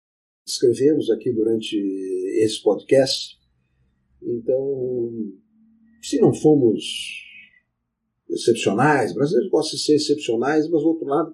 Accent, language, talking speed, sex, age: Brazilian, Portuguese, 100 wpm, male, 50-69